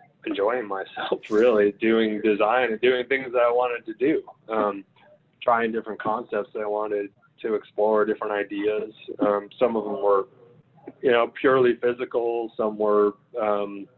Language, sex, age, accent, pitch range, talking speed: English, male, 20-39, American, 105-120 Hz, 150 wpm